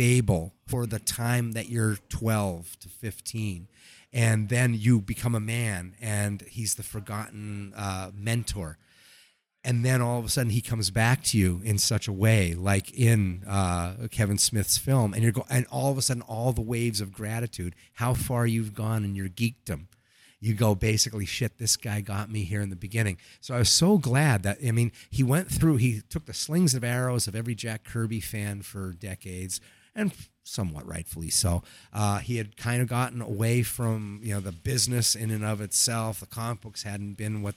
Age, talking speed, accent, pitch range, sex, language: 30-49, 200 wpm, American, 100-120 Hz, male, English